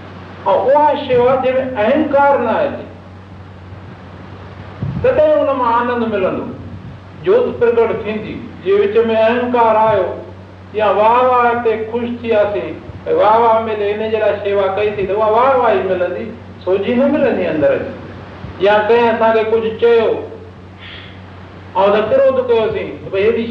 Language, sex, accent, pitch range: Hindi, male, native, 175-245 Hz